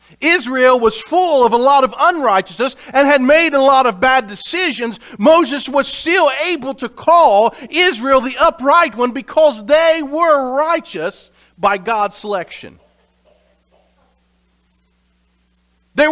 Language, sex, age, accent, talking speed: English, male, 50-69, American, 125 wpm